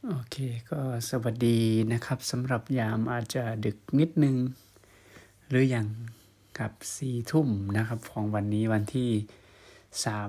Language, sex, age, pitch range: Thai, male, 20-39, 105-125 Hz